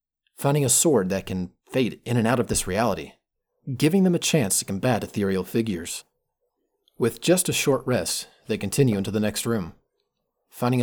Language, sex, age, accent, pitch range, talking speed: English, male, 30-49, American, 100-130 Hz, 175 wpm